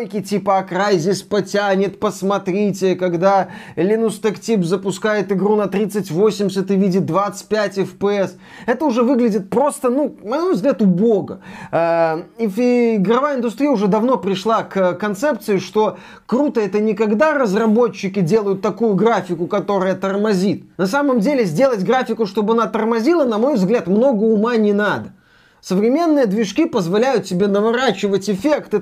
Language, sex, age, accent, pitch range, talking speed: Russian, male, 20-39, native, 195-240 Hz, 130 wpm